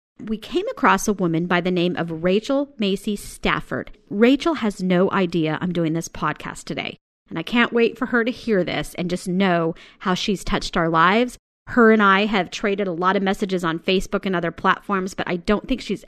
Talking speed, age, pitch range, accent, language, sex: 215 wpm, 30-49, 185-235 Hz, American, English, female